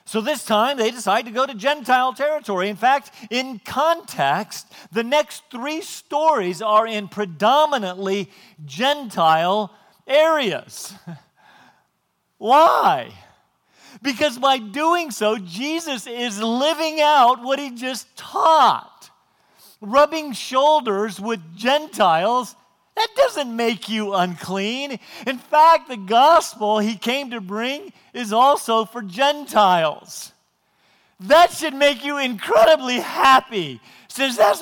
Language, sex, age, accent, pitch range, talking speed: English, male, 50-69, American, 175-255 Hz, 115 wpm